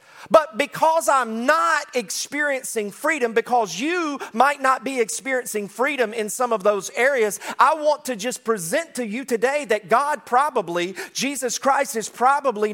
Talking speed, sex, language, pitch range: 155 wpm, male, English, 175-255 Hz